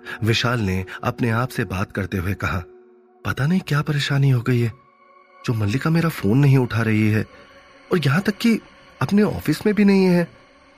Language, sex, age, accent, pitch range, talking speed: Hindi, male, 30-49, native, 100-150 Hz, 190 wpm